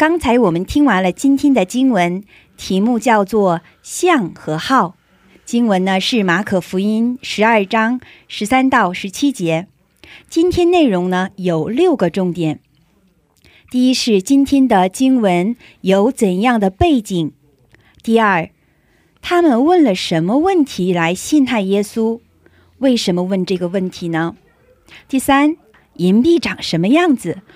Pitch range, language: 185-270 Hz, Korean